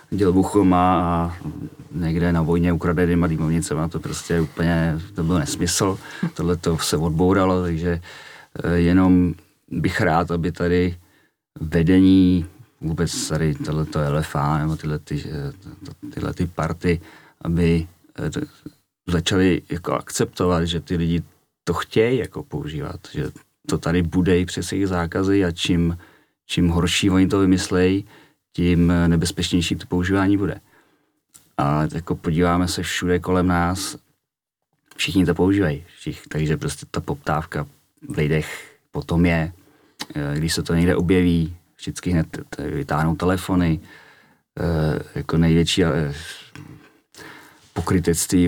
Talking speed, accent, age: 120 wpm, native, 40-59